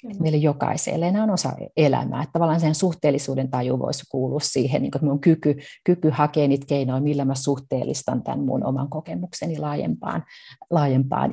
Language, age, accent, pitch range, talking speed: Finnish, 30-49, native, 140-165 Hz, 145 wpm